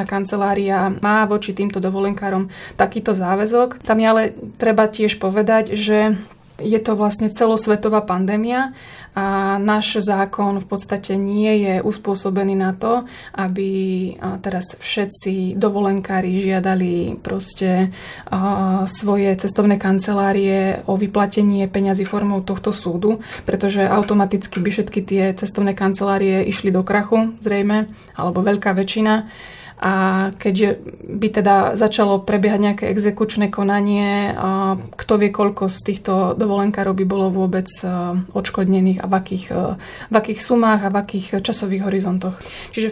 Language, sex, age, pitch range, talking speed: Slovak, female, 20-39, 195-215 Hz, 125 wpm